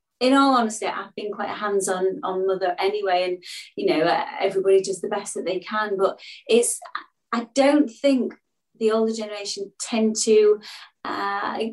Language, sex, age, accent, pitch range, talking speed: English, female, 30-49, British, 200-245 Hz, 170 wpm